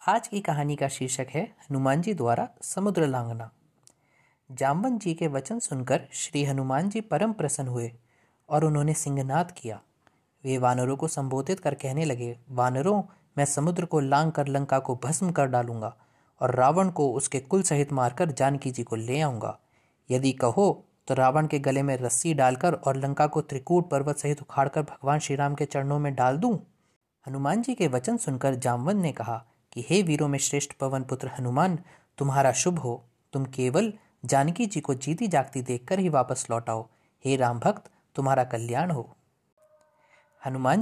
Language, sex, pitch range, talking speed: Hindi, male, 130-165 Hz, 170 wpm